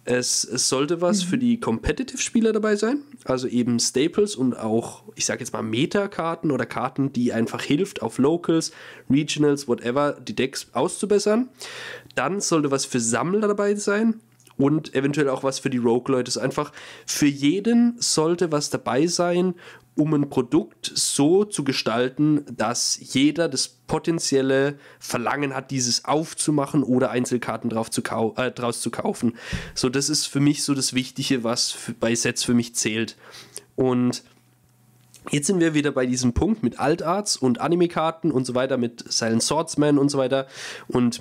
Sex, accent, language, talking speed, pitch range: male, German, German, 160 wpm, 125-165 Hz